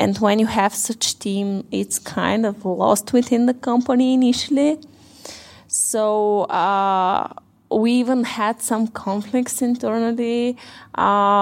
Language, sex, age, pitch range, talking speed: English, female, 20-39, 195-235 Hz, 120 wpm